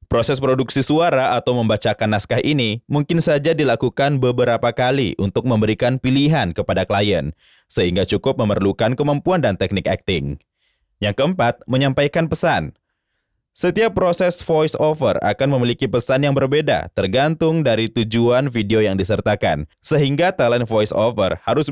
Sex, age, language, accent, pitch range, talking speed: male, 20-39, Indonesian, native, 105-150 Hz, 125 wpm